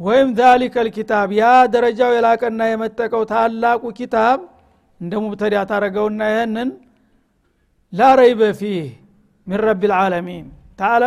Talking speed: 115 wpm